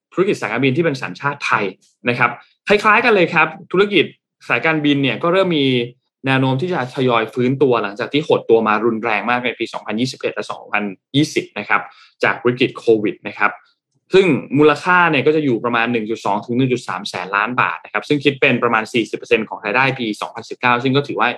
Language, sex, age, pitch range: Thai, male, 20-39, 120-150 Hz